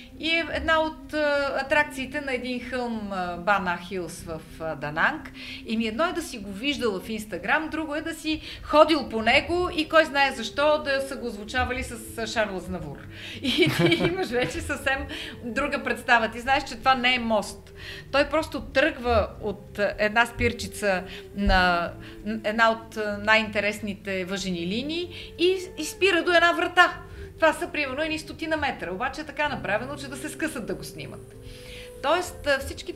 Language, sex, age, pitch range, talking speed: Bulgarian, female, 30-49, 190-280 Hz, 165 wpm